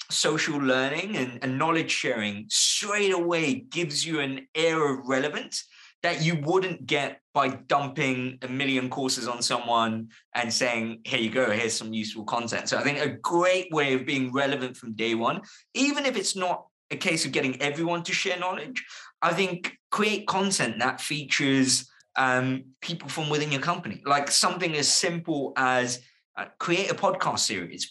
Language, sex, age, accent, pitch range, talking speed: English, male, 20-39, British, 125-170 Hz, 170 wpm